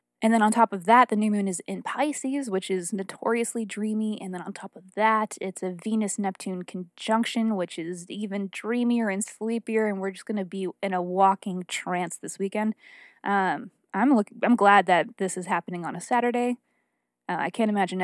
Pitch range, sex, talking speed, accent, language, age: 180-225 Hz, female, 195 wpm, American, English, 20-39